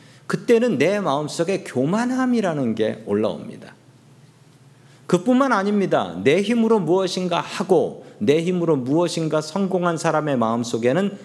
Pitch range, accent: 135-180 Hz, native